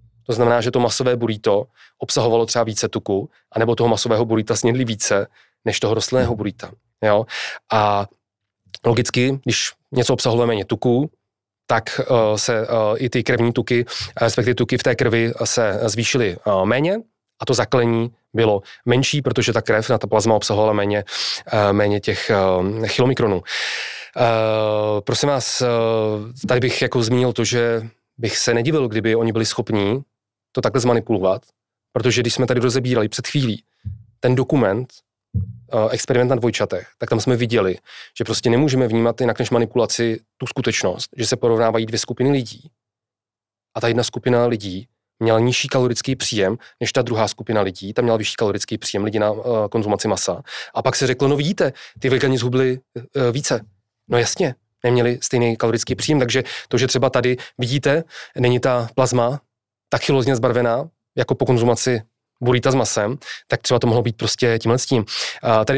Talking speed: 160 wpm